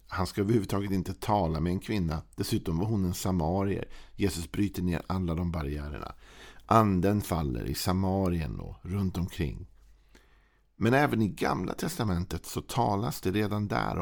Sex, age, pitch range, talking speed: male, 50-69, 85-105 Hz, 155 wpm